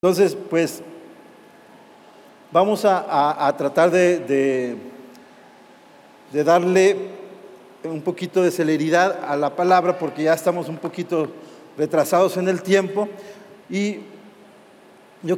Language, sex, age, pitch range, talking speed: Spanish, male, 50-69, 165-200 Hz, 115 wpm